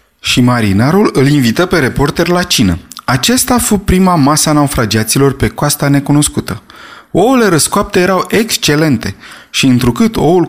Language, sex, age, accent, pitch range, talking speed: Romanian, male, 20-39, native, 125-170 Hz, 130 wpm